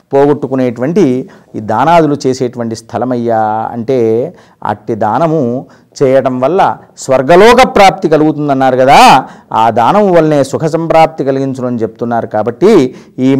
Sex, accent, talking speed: male, native, 110 wpm